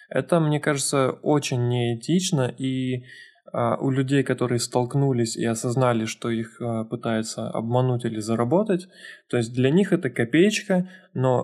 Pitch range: 120-140 Hz